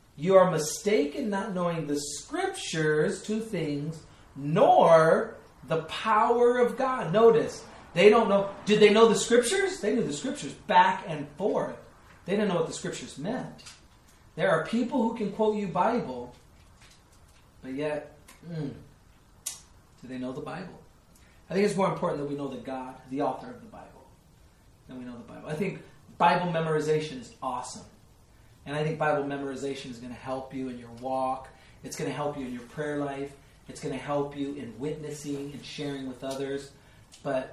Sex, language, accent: male, English, American